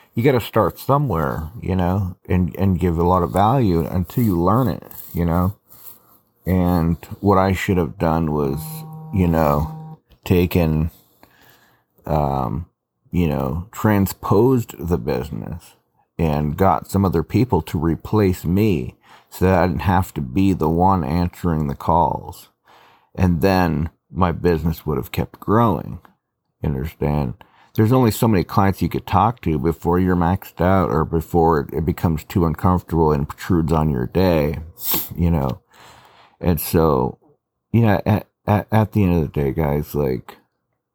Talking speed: 150 wpm